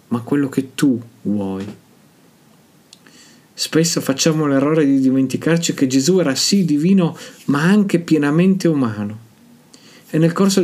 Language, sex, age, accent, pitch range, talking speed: Italian, male, 40-59, native, 145-185 Hz, 125 wpm